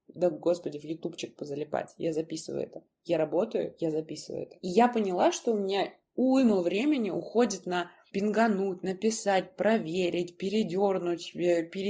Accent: native